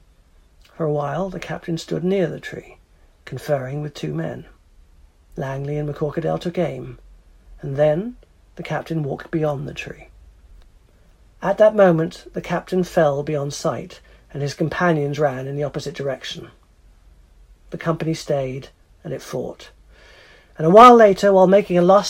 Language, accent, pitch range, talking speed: English, British, 140-190 Hz, 150 wpm